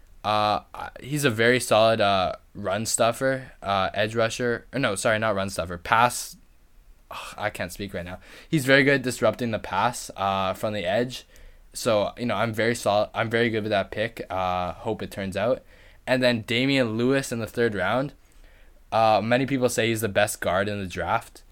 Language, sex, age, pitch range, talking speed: English, male, 10-29, 95-120 Hz, 200 wpm